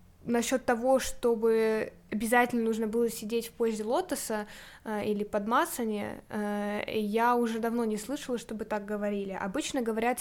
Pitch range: 220-255 Hz